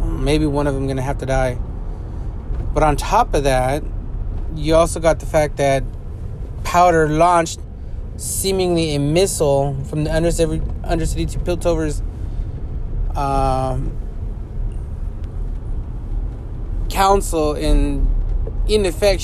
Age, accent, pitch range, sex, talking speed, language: 20-39, American, 105-165 Hz, male, 115 wpm, English